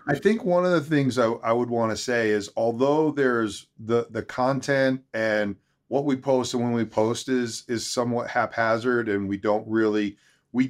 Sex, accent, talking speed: male, American, 195 wpm